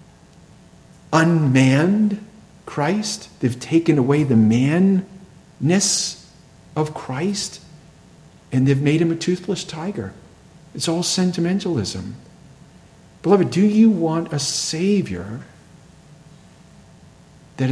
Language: English